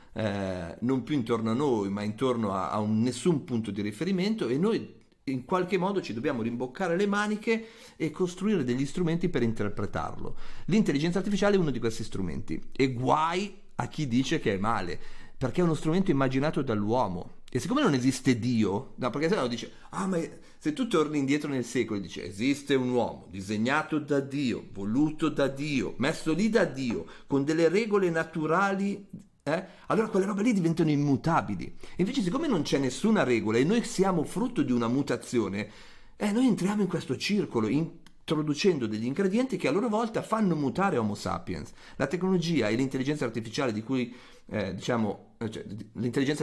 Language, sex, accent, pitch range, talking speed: Italian, male, native, 115-180 Hz, 175 wpm